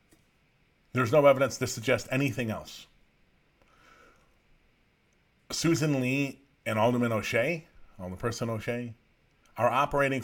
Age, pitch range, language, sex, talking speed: 40-59, 100-130 Hz, English, male, 100 wpm